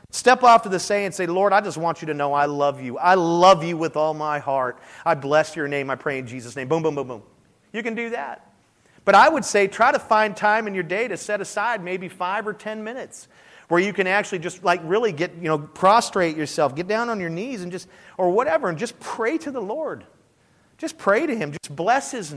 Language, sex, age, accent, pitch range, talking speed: English, male, 40-59, American, 130-180 Hz, 250 wpm